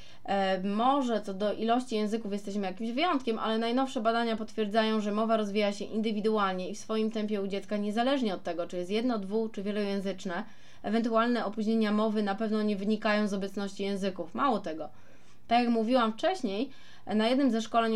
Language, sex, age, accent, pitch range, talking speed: Polish, female, 20-39, native, 195-240 Hz, 175 wpm